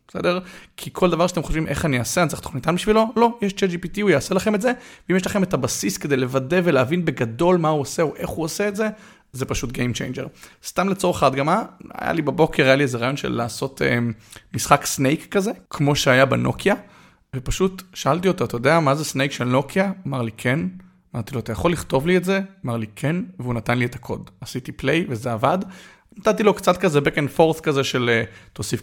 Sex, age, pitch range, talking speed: male, 30-49, 130-185 Hz, 195 wpm